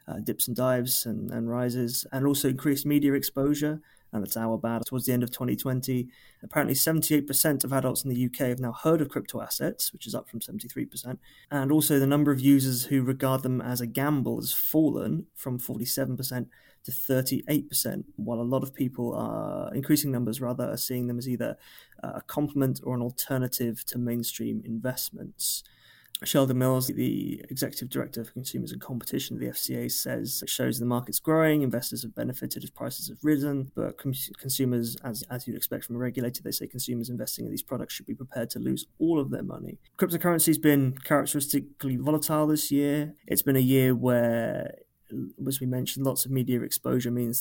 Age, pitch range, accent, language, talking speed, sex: 20-39, 120-145 Hz, British, English, 190 wpm, male